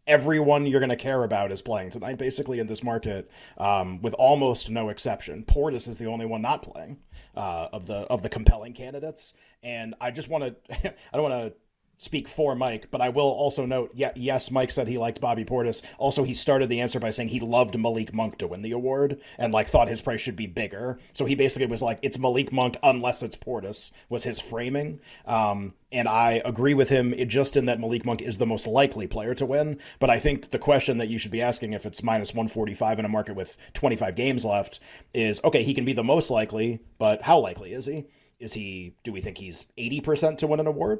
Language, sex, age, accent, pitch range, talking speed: English, male, 30-49, American, 115-135 Hz, 230 wpm